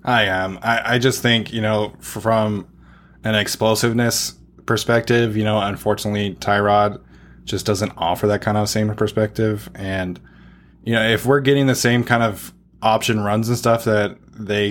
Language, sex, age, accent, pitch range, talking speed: English, male, 20-39, American, 100-115 Hz, 165 wpm